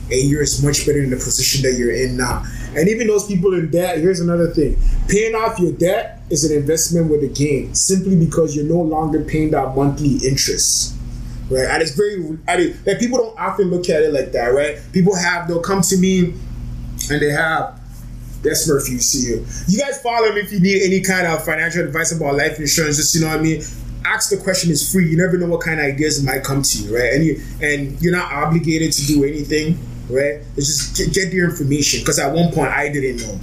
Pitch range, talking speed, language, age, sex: 130-170 Hz, 235 wpm, English, 20-39, male